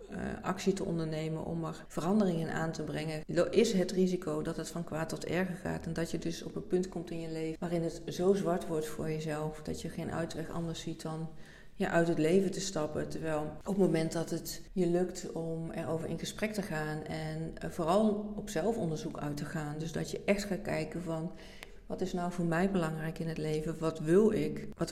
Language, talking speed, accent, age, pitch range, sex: Dutch, 215 wpm, Dutch, 40-59, 155-180 Hz, female